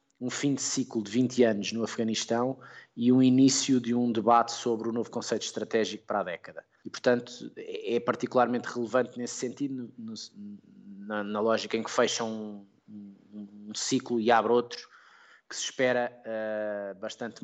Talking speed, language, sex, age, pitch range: 170 wpm, Portuguese, male, 20-39, 105-130 Hz